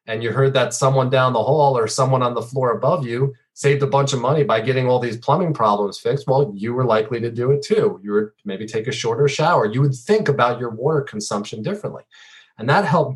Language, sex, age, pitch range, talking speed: English, male, 30-49, 120-145 Hz, 240 wpm